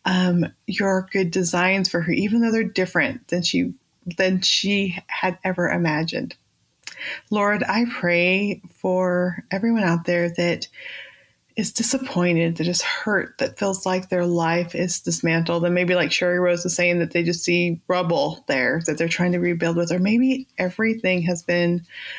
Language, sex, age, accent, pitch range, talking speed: English, female, 20-39, American, 170-195 Hz, 165 wpm